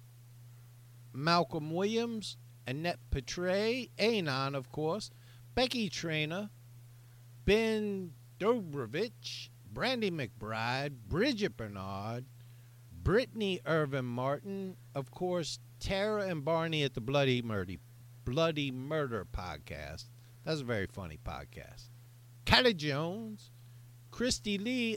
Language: English